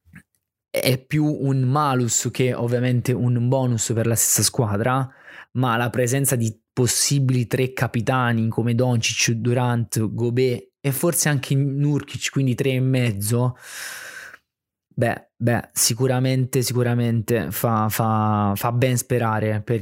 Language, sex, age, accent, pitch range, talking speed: Italian, male, 20-39, native, 115-130 Hz, 125 wpm